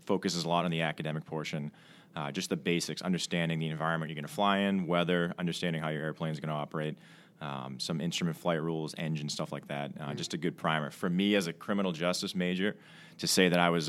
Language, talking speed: English, 235 wpm